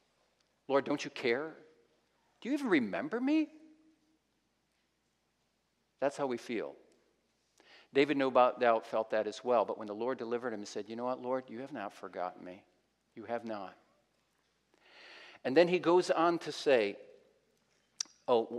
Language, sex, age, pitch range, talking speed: English, male, 50-69, 120-170 Hz, 155 wpm